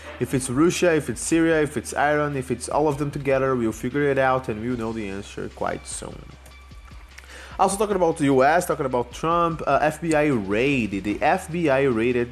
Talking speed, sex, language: 195 wpm, male, English